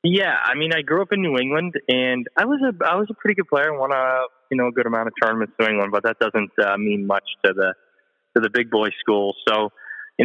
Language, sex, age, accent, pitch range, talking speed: English, male, 20-39, American, 105-130 Hz, 275 wpm